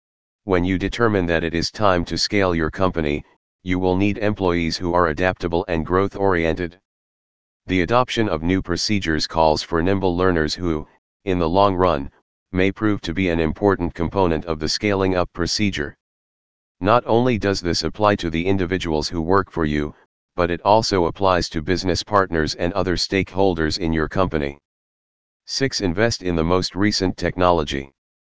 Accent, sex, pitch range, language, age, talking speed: American, male, 80-95 Hz, English, 40-59, 165 wpm